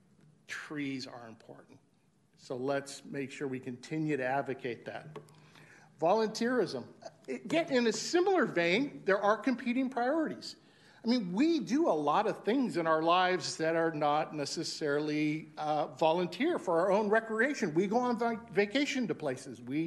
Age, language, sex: 50-69, English, male